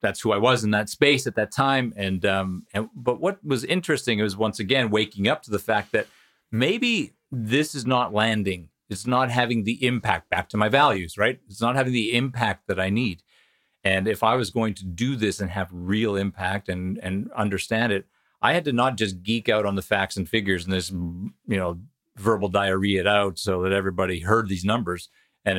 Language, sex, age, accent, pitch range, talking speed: English, male, 40-59, American, 95-115 Hz, 215 wpm